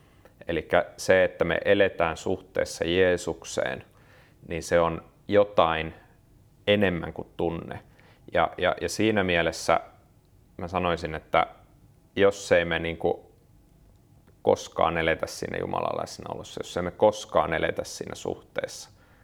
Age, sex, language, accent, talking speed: 30-49, male, Finnish, native, 115 wpm